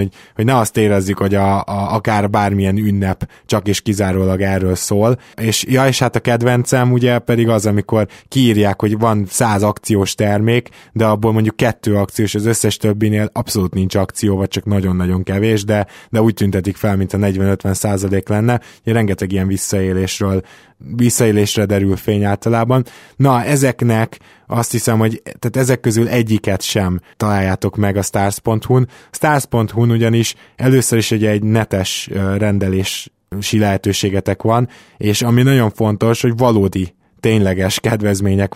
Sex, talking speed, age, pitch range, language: male, 150 wpm, 20-39, 100-115 Hz, Hungarian